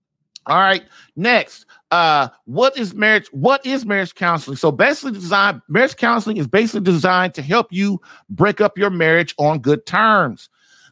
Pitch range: 175-225 Hz